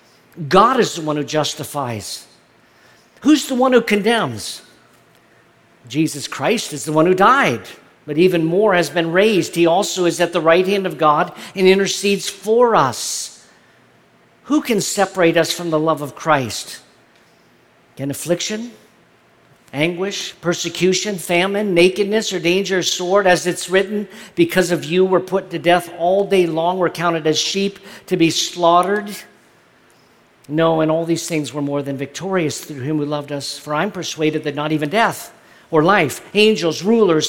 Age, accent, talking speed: 50-69, American, 160 wpm